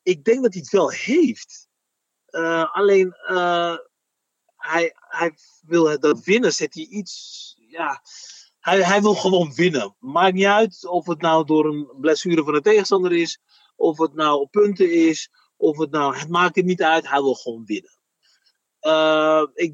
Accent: Dutch